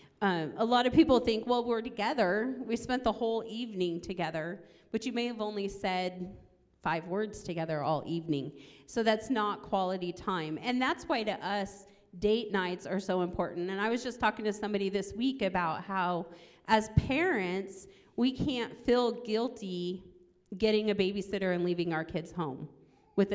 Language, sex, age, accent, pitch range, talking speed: English, female, 40-59, American, 180-225 Hz, 170 wpm